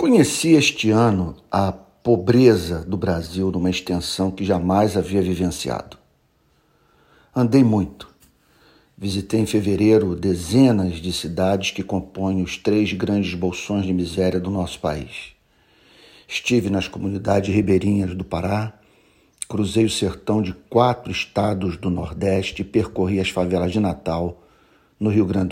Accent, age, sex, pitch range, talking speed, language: Brazilian, 50-69, male, 90-110 Hz, 130 wpm, Portuguese